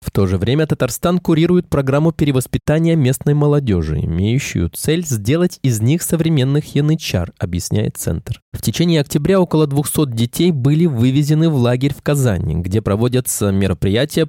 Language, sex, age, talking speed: Russian, male, 20-39, 145 wpm